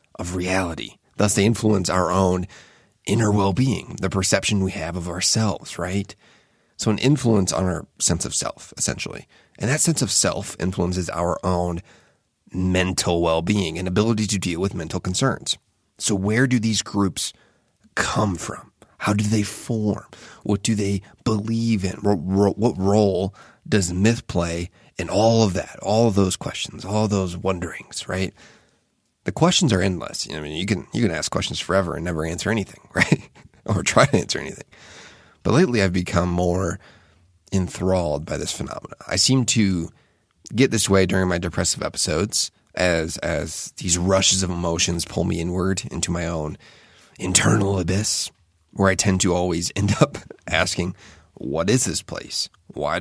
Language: English